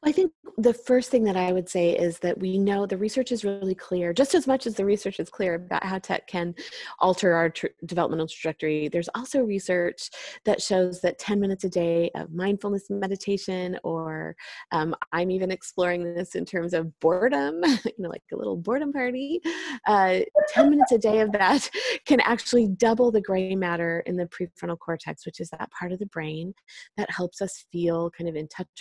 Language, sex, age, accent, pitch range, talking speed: English, female, 20-39, American, 175-225 Hz, 200 wpm